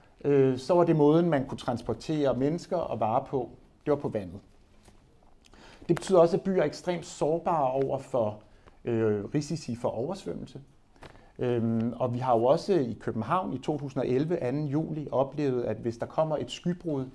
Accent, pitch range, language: native, 120-160 Hz, Danish